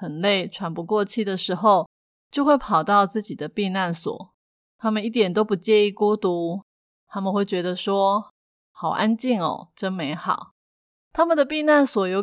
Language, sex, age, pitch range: Chinese, female, 20-39, 185-215 Hz